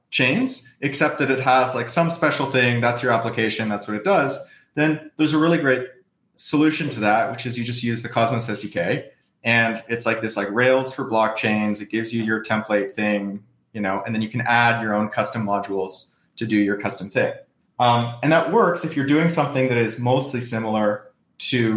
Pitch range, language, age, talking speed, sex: 110-135 Hz, English, 30-49, 205 wpm, male